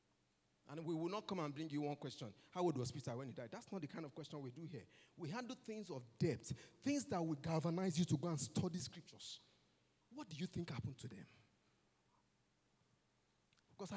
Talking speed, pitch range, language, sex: 210 wpm, 130-185 Hz, English, male